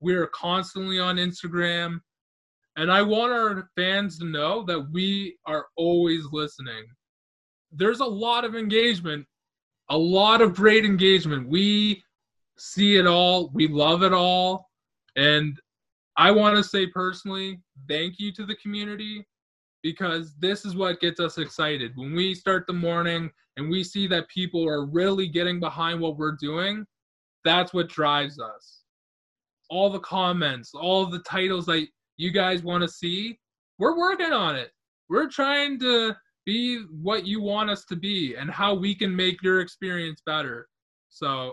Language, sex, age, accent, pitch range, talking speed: English, male, 20-39, American, 160-195 Hz, 160 wpm